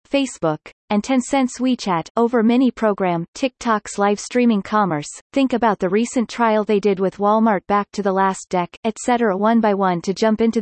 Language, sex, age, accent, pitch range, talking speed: English, female, 30-49, American, 185-235 Hz, 175 wpm